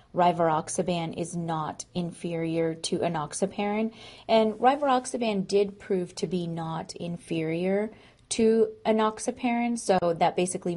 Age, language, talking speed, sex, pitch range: 30-49, Persian, 105 wpm, female, 170-205 Hz